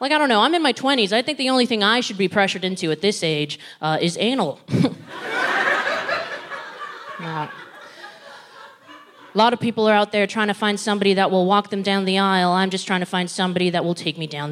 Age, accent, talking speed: 20-39, American, 220 wpm